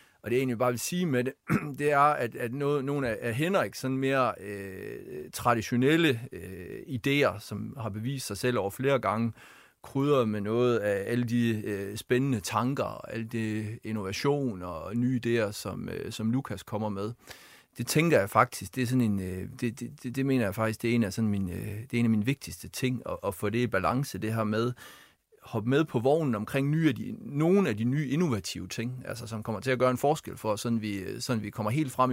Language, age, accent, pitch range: Danish, 30-49, native, 110-135 Hz